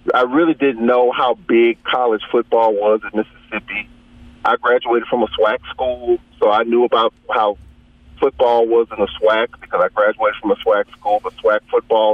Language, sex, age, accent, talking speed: English, male, 40-59, American, 185 wpm